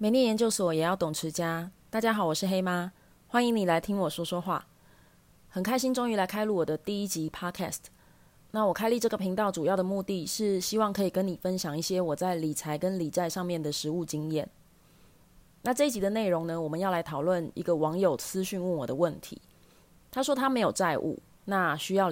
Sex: female